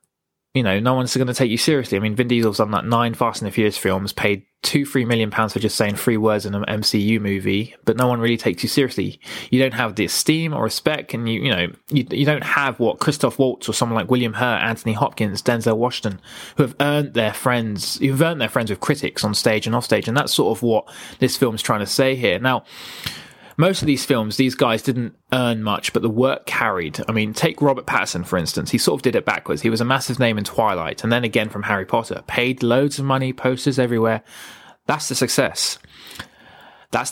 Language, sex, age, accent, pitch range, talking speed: English, male, 20-39, British, 110-140 Hz, 240 wpm